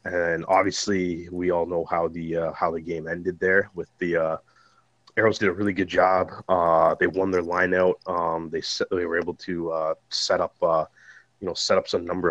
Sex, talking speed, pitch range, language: male, 215 wpm, 80-90 Hz, English